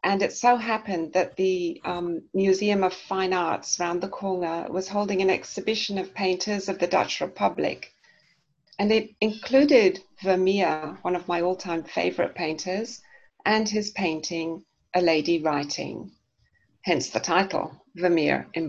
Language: English